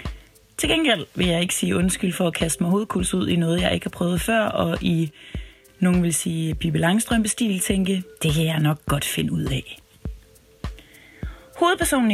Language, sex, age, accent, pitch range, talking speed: Danish, female, 30-49, native, 160-215 Hz, 185 wpm